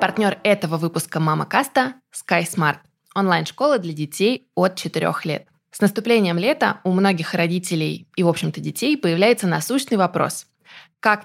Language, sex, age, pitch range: Russian, female, 20-39, 165-200 Hz